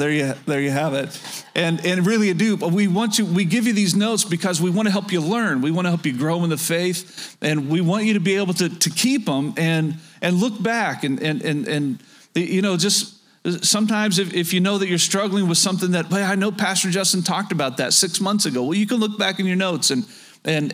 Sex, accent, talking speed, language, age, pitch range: male, American, 260 wpm, English, 40-59, 150-190 Hz